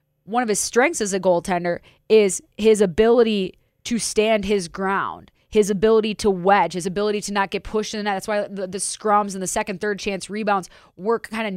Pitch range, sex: 185-215 Hz, female